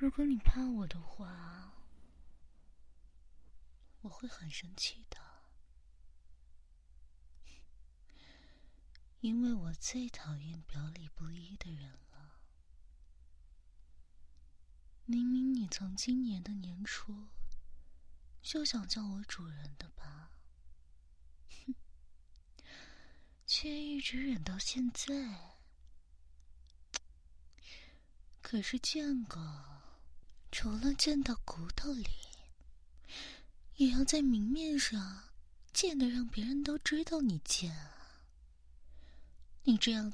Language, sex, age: Chinese, female, 20-39